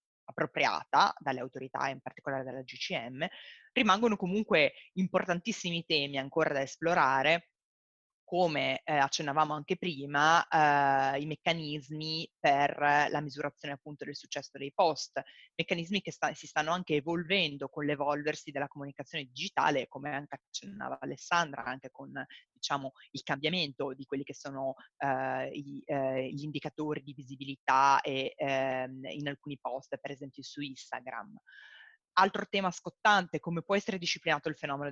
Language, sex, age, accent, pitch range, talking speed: Italian, female, 20-39, native, 140-175 Hz, 140 wpm